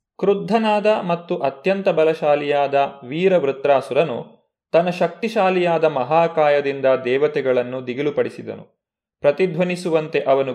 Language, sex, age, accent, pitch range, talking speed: Kannada, male, 30-49, native, 145-190 Hz, 75 wpm